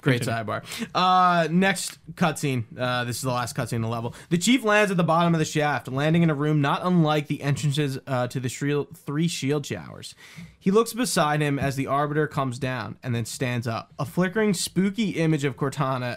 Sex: male